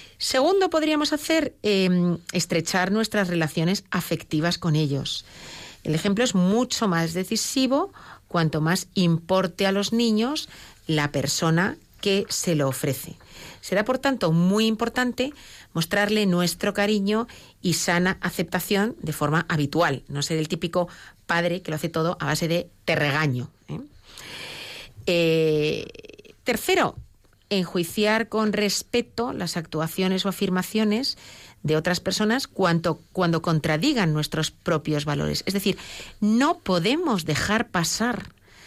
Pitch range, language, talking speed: 160-220 Hz, Spanish, 125 wpm